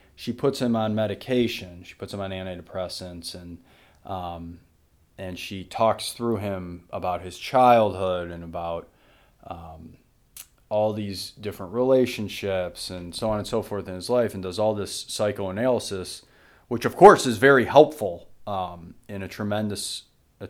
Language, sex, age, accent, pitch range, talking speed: English, male, 30-49, American, 95-145 Hz, 150 wpm